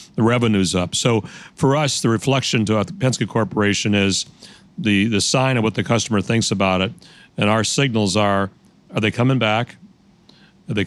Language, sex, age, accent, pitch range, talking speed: English, male, 60-79, American, 100-115 Hz, 175 wpm